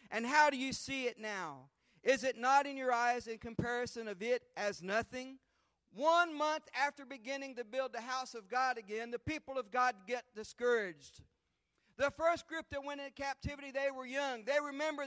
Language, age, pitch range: English, 40-59, 240-290 Hz